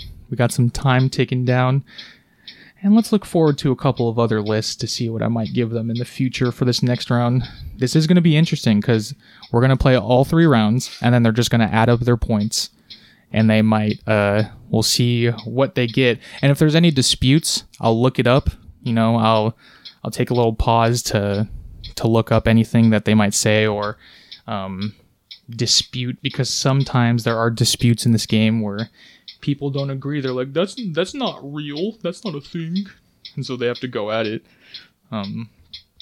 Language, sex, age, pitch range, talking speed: English, male, 20-39, 115-140 Hz, 205 wpm